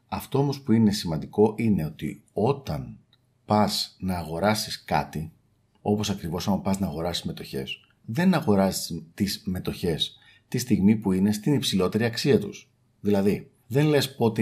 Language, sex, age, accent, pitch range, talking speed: Greek, male, 50-69, native, 100-125 Hz, 145 wpm